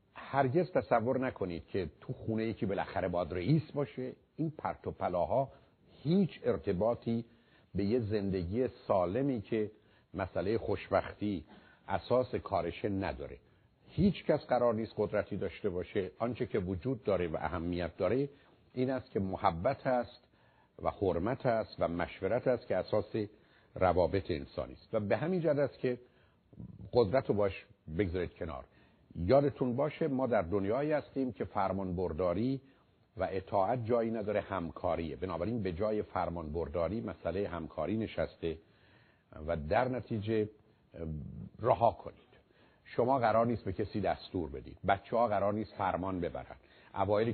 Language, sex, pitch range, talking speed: Persian, male, 95-125 Hz, 135 wpm